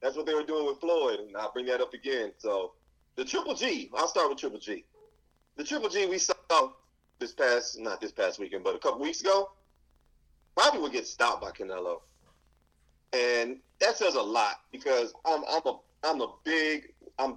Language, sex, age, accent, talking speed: English, male, 30-49, American, 195 wpm